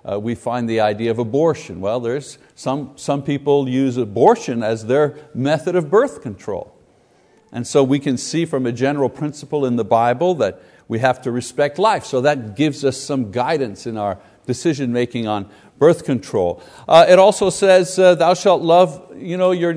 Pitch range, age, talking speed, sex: 130-170 Hz, 60-79, 180 wpm, male